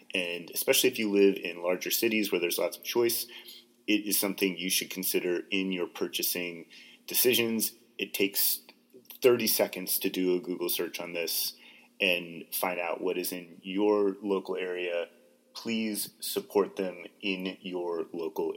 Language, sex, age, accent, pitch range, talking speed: English, male, 30-49, American, 95-115 Hz, 160 wpm